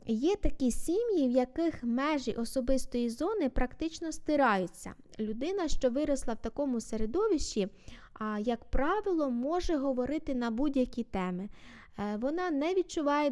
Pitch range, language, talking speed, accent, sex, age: 230-305 Hz, Ukrainian, 115 wpm, native, female, 20-39